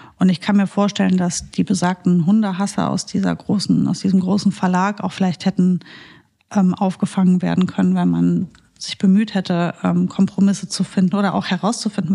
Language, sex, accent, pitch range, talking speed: German, female, German, 185-210 Hz, 175 wpm